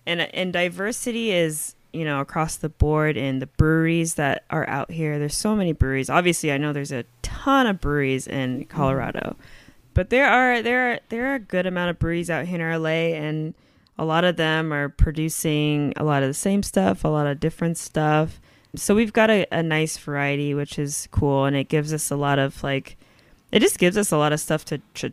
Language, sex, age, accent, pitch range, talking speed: English, female, 20-39, American, 140-170 Hz, 220 wpm